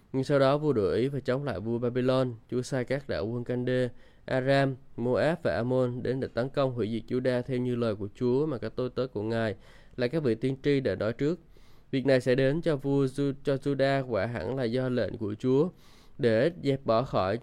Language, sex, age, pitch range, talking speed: Vietnamese, male, 20-39, 115-135 Hz, 225 wpm